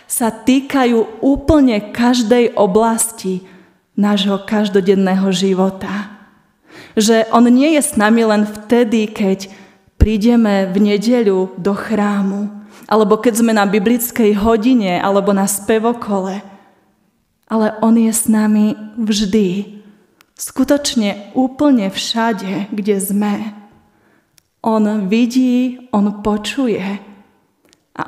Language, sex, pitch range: Slovak, female, 205-235 Hz